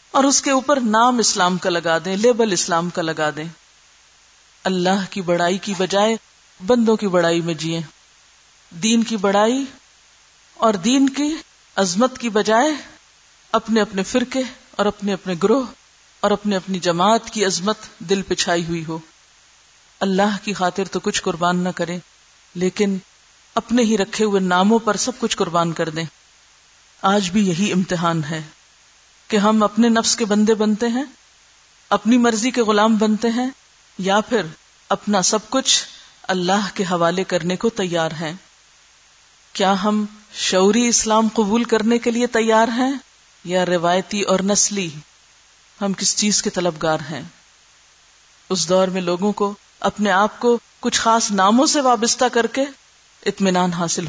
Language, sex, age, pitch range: Urdu, female, 40-59, 180-225 Hz